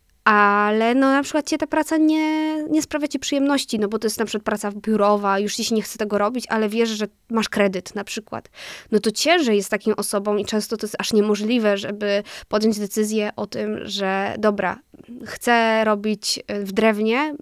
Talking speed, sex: 200 wpm, female